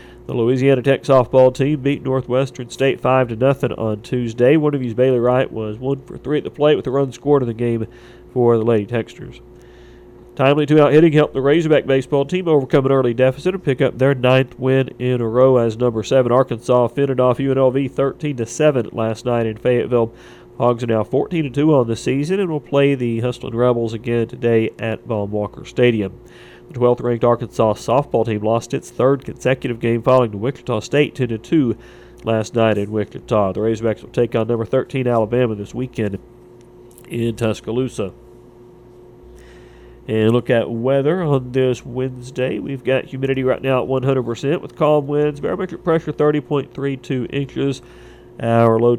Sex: male